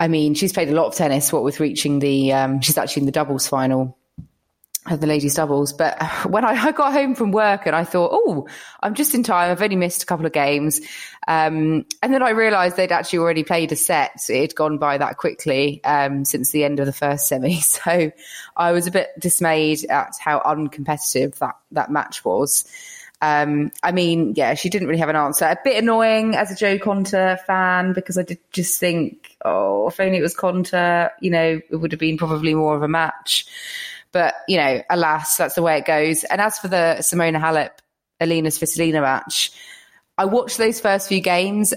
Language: English